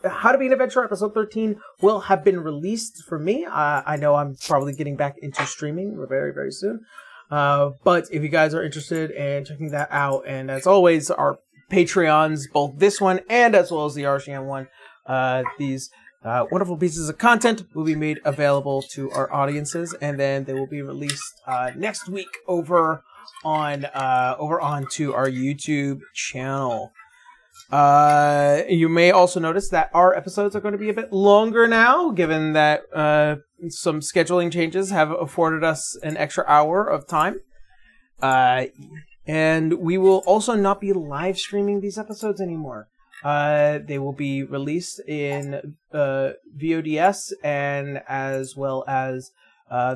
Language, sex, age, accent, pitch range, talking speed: English, male, 30-49, American, 140-185 Hz, 165 wpm